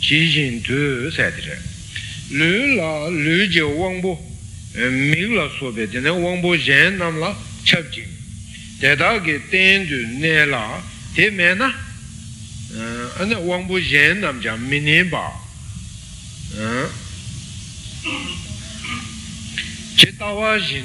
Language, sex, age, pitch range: Italian, male, 60-79, 110-170 Hz